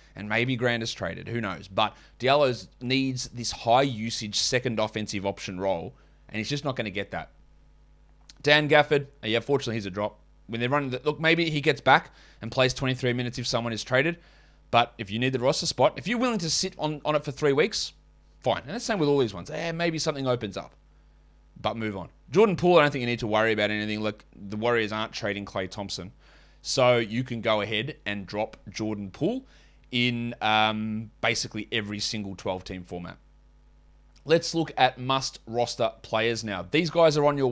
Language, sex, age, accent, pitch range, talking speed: English, male, 20-39, Australian, 110-145 Hz, 210 wpm